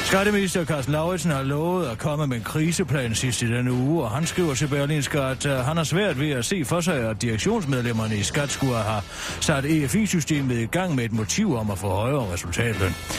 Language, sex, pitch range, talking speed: Danish, male, 115-160 Hz, 205 wpm